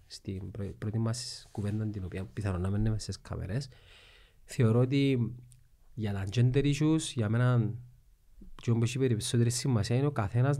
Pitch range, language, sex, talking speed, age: 105-130 Hz, Greek, male, 145 wpm, 30-49